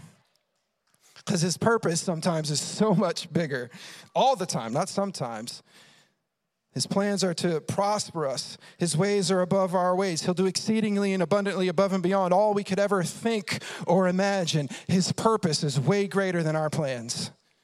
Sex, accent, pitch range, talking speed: male, American, 165-195 Hz, 165 wpm